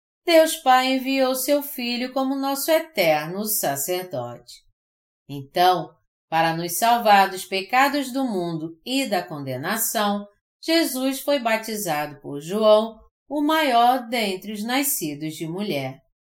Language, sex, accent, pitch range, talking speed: Portuguese, female, Brazilian, 165-270 Hz, 120 wpm